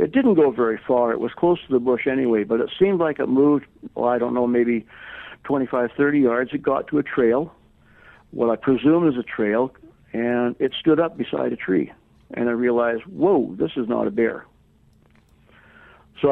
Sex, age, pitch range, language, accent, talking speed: male, 60-79, 120-150 Hz, English, American, 200 wpm